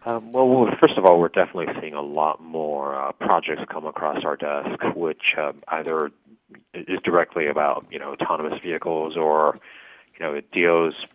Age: 30-49